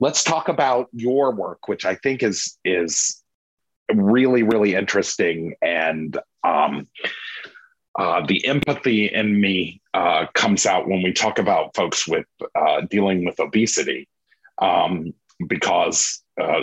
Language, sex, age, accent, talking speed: English, male, 50-69, American, 130 wpm